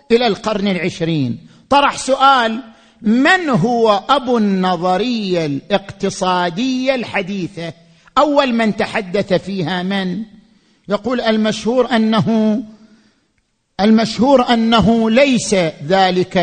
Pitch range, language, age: 185-250 Hz, Arabic, 50-69